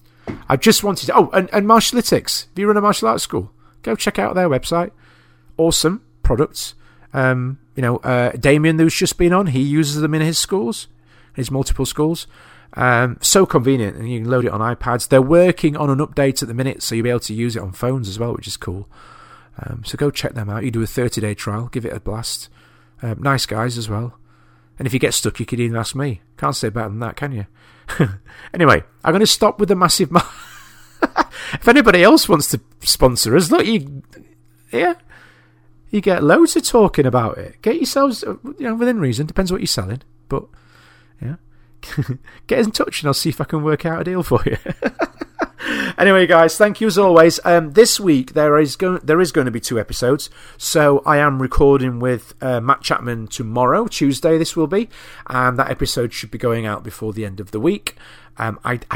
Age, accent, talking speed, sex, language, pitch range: 40-59, British, 210 wpm, male, English, 110-165 Hz